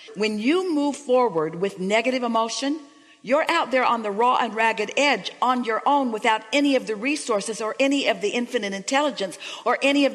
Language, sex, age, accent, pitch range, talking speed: English, female, 50-69, American, 190-270 Hz, 195 wpm